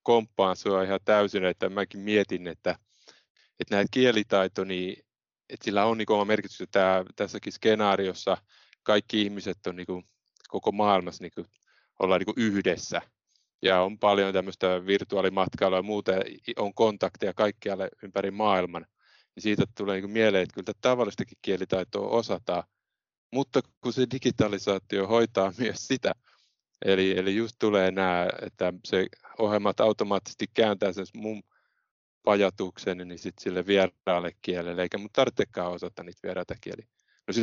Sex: male